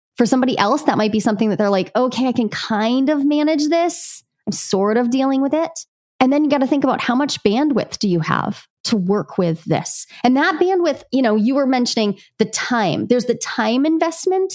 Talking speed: 225 wpm